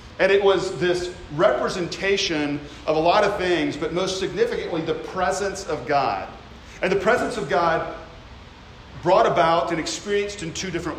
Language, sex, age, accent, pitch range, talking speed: English, male, 40-59, American, 155-200 Hz, 160 wpm